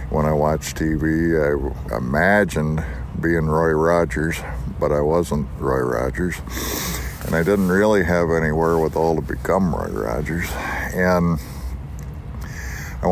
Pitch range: 75-90 Hz